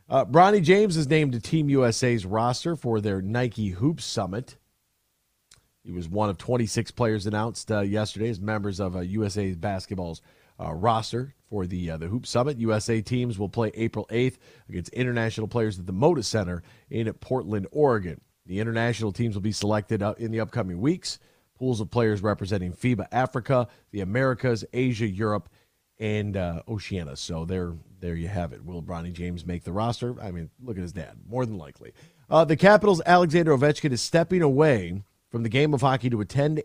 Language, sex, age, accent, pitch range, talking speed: English, male, 40-59, American, 100-125 Hz, 185 wpm